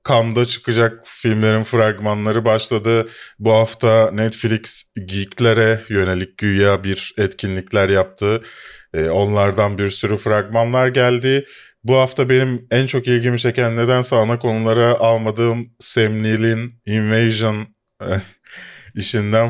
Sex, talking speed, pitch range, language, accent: male, 105 wpm, 100-125 Hz, Turkish, native